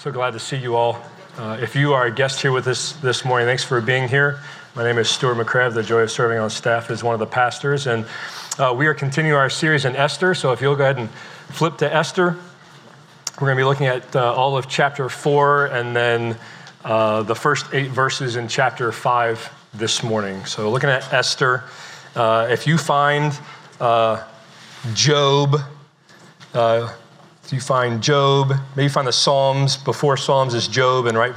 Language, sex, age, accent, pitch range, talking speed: English, male, 40-59, American, 120-150 Hz, 195 wpm